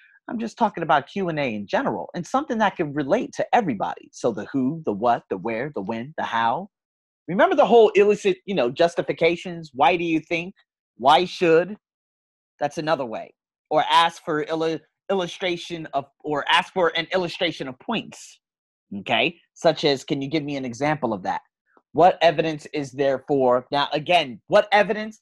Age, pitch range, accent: 30-49, 140-180 Hz, American